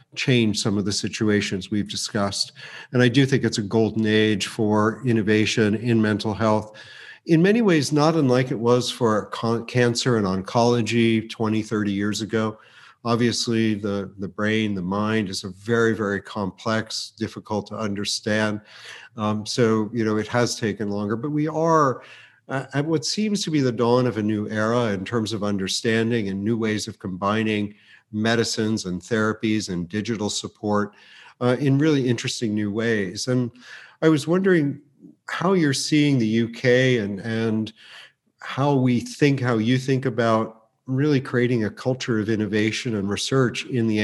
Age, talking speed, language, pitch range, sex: 50-69, 165 wpm, English, 105-125 Hz, male